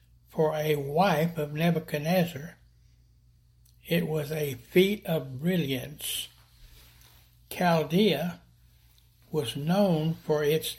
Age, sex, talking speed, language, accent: 60-79, male, 90 wpm, English, American